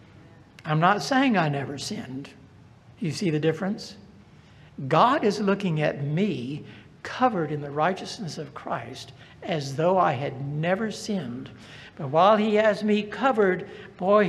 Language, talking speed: English, 145 wpm